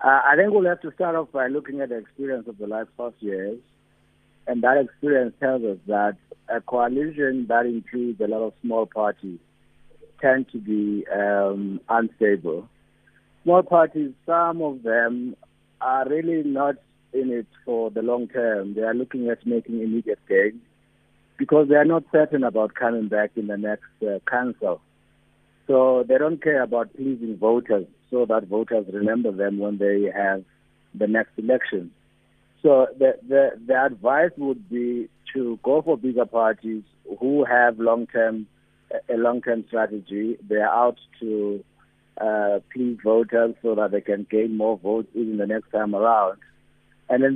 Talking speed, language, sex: 160 wpm, English, male